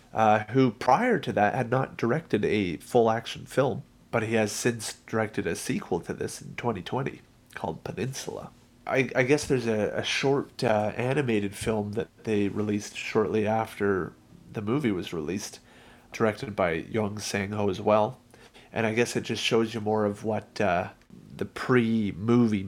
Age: 30-49